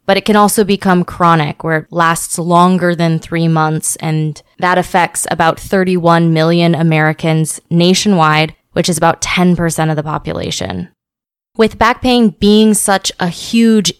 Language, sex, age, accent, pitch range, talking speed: English, female, 20-39, American, 165-195 Hz, 150 wpm